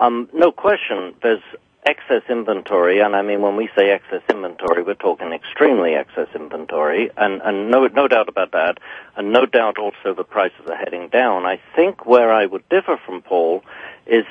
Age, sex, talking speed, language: 60-79, male, 185 wpm, English